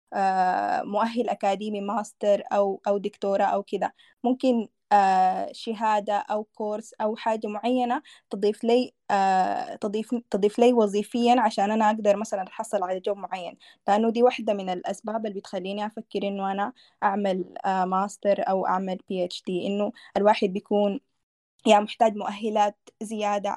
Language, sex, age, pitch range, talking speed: Arabic, female, 20-39, 200-230 Hz, 120 wpm